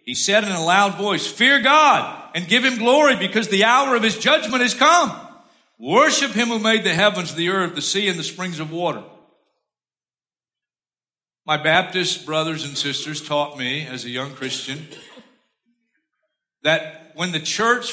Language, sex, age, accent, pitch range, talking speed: English, male, 50-69, American, 170-230 Hz, 165 wpm